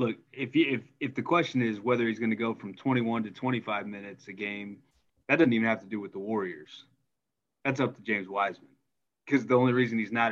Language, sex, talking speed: English, male, 235 wpm